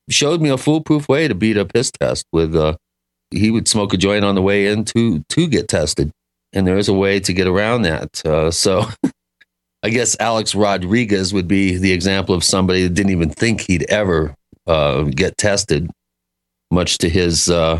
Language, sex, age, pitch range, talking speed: English, male, 40-59, 80-95 Hz, 195 wpm